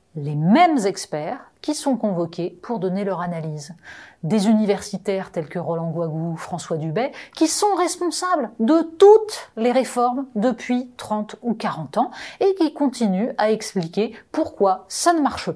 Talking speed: 155 wpm